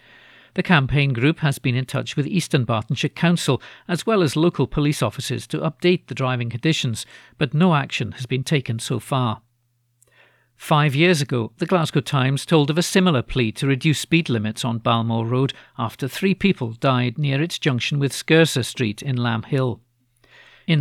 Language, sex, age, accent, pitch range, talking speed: English, male, 50-69, British, 125-155 Hz, 180 wpm